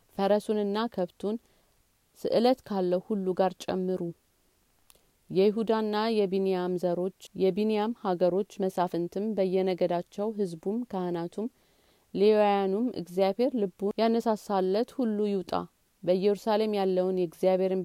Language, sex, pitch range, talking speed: Amharic, female, 185-210 Hz, 85 wpm